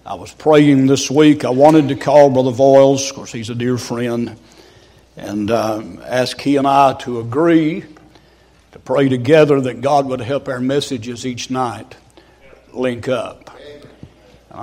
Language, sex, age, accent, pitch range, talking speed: English, male, 60-79, American, 125-145 Hz, 160 wpm